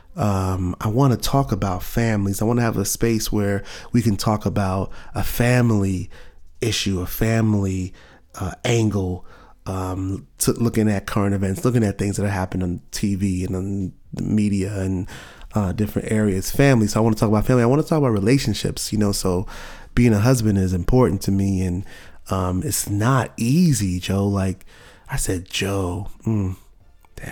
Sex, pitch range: male, 95-115 Hz